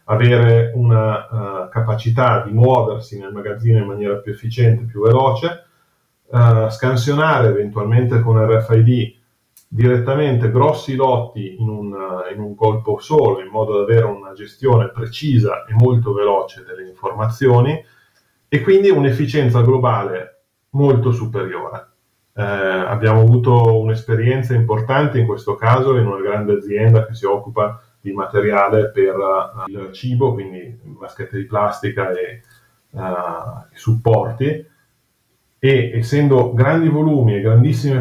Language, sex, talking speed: English, male, 115 wpm